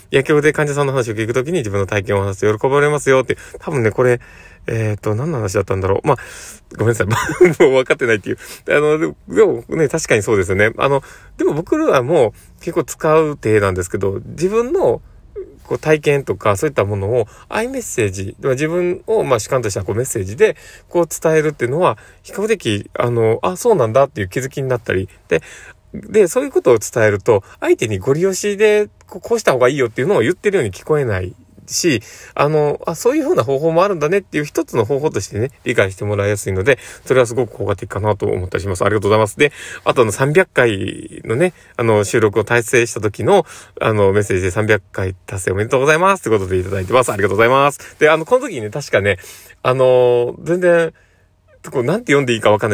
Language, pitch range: Japanese, 105-170 Hz